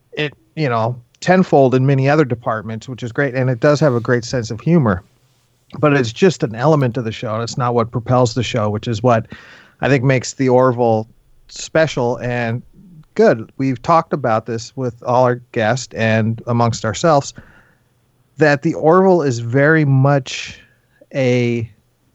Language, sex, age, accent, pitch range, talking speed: English, male, 40-59, American, 120-140 Hz, 170 wpm